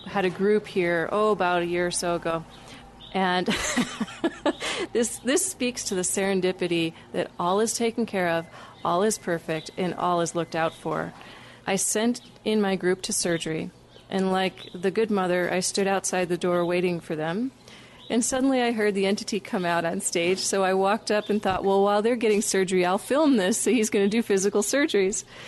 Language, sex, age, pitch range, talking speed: English, female, 30-49, 185-225 Hz, 200 wpm